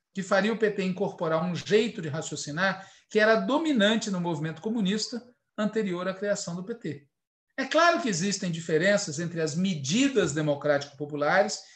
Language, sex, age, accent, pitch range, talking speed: Portuguese, male, 50-69, Brazilian, 185-260 Hz, 150 wpm